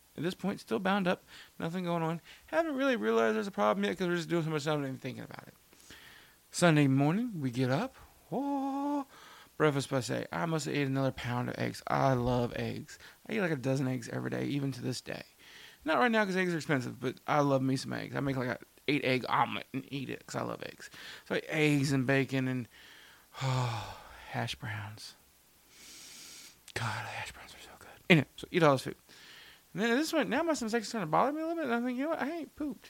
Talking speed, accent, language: 245 wpm, American, English